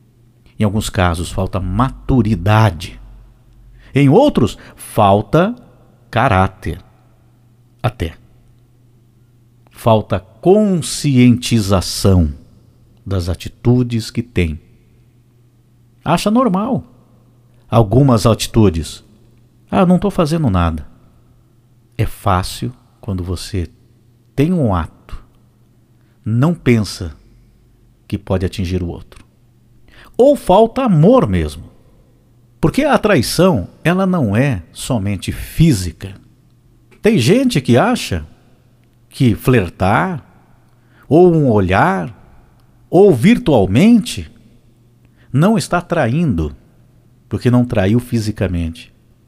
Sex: male